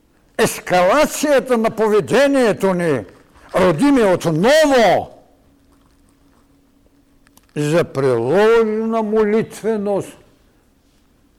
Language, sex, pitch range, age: Bulgarian, male, 180-230 Hz, 60-79